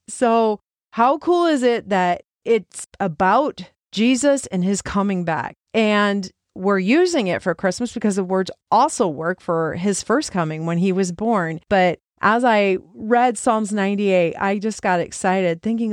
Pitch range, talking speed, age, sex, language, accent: 185-230 Hz, 160 wpm, 40-59, female, English, American